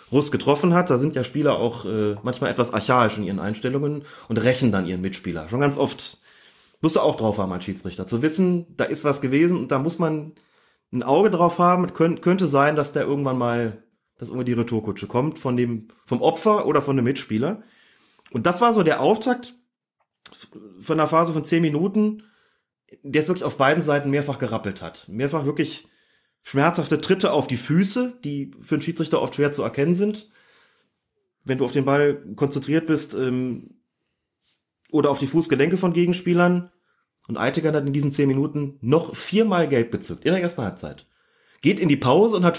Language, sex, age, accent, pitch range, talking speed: German, male, 30-49, German, 125-170 Hz, 185 wpm